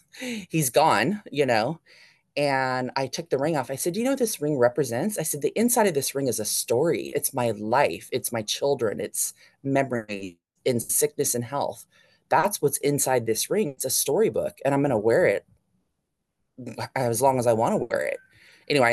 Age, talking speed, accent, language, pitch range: 20-39, 205 wpm, American, English, 115-160 Hz